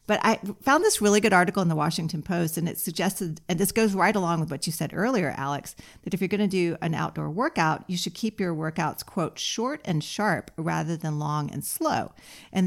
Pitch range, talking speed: 155-200 Hz, 230 wpm